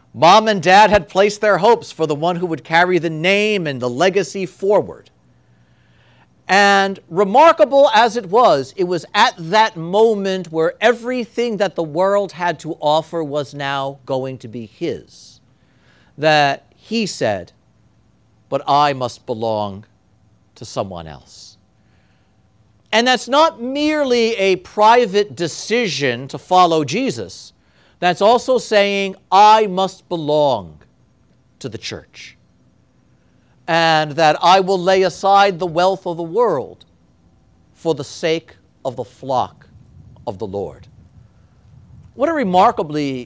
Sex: male